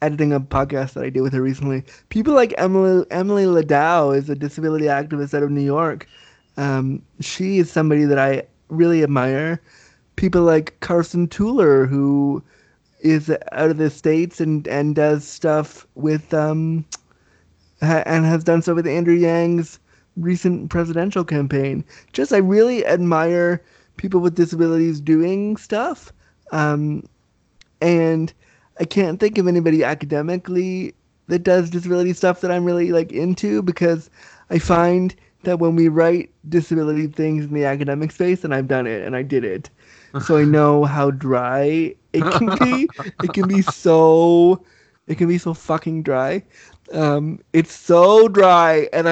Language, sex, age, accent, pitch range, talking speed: English, male, 20-39, American, 150-180 Hz, 155 wpm